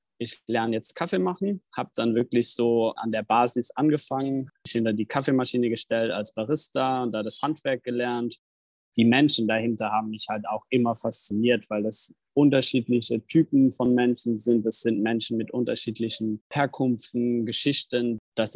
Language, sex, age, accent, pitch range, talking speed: German, male, 20-39, German, 110-130 Hz, 160 wpm